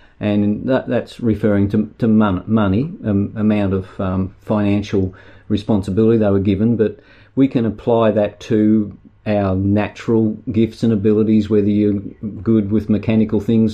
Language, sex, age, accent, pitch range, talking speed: English, male, 50-69, Australian, 100-110 Hz, 150 wpm